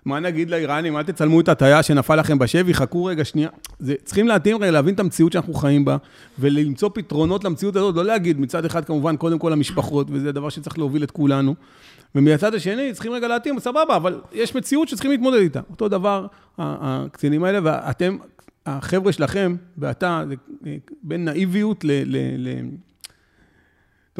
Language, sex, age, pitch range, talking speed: Hebrew, male, 40-59, 150-215 Hz, 170 wpm